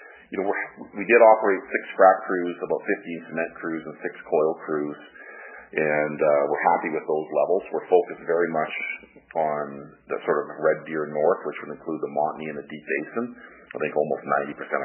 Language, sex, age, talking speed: English, male, 40-59, 195 wpm